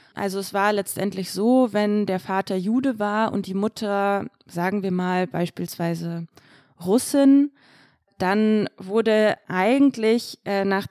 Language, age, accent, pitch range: German, 20-39, German, 175-215 Hz